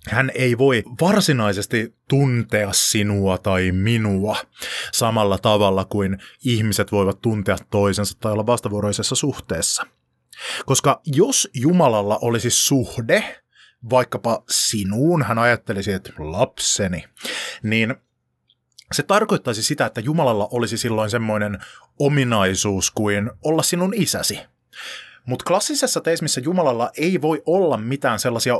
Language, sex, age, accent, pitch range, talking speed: Finnish, male, 30-49, native, 105-145 Hz, 110 wpm